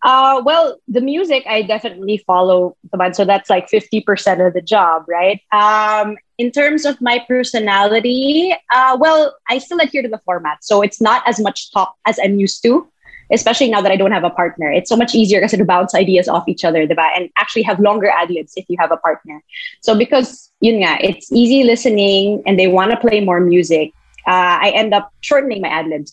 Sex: female